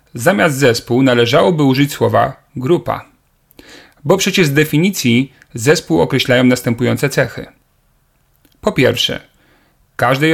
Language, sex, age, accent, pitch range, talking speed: Polish, male, 40-59, native, 120-155 Hz, 100 wpm